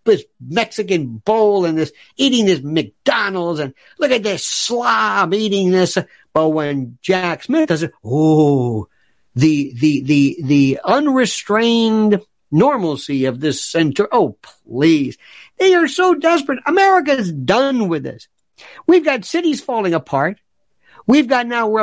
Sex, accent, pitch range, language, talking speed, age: male, American, 170-270 Hz, English, 135 wpm, 50-69